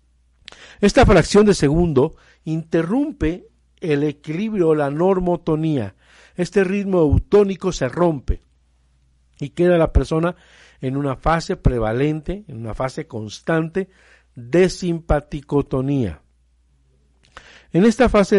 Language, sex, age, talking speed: Spanish, male, 50-69, 100 wpm